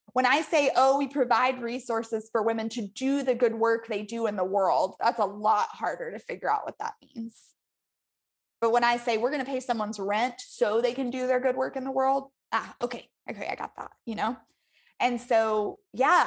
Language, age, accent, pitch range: English, 20-39, American, 225-280 Hz